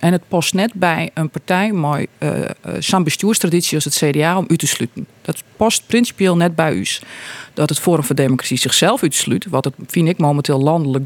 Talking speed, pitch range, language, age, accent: 200 wpm, 150-190 Hz, Dutch, 30-49, Dutch